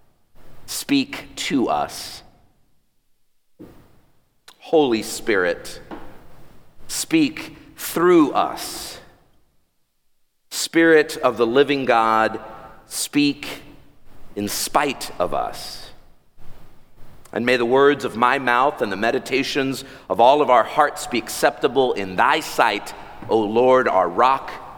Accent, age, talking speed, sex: American, 50-69, 100 wpm, male